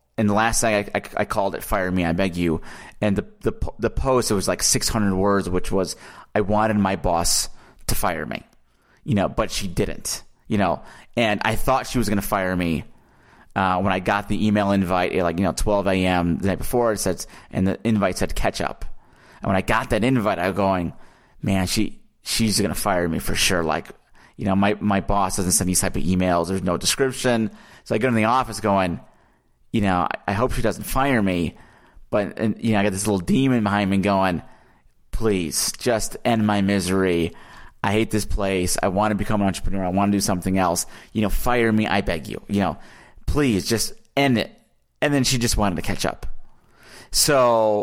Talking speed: 215 wpm